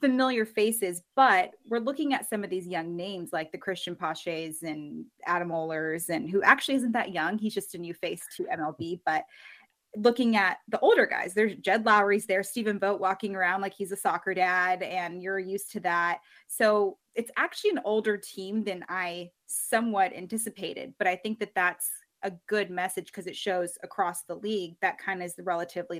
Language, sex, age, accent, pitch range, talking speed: English, female, 20-39, American, 175-205 Hz, 195 wpm